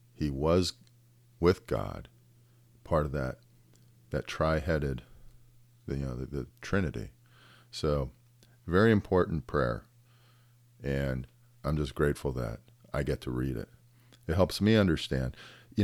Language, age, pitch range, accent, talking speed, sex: English, 40-59, 75-120 Hz, American, 125 wpm, male